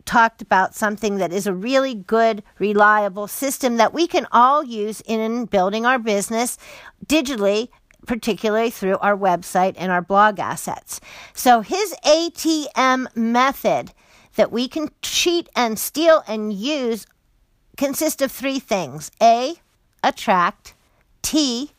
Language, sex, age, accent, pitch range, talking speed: English, female, 50-69, American, 205-255 Hz, 130 wpm